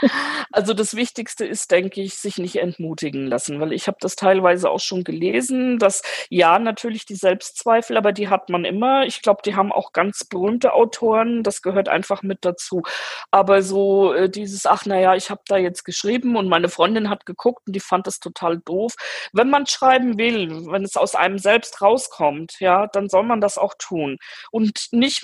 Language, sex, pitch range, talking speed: German, female, 190-240 Hz, 195 wpm